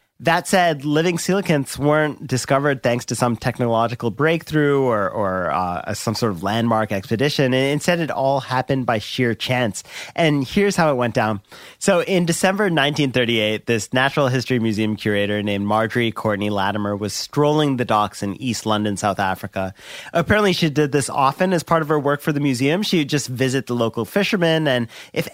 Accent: American